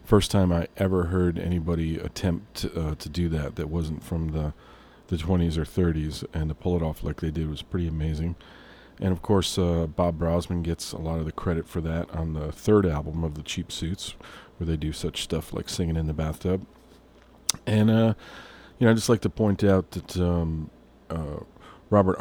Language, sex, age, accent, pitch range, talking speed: English, male, 40-59, American, 80-90 Hz, 205 wpm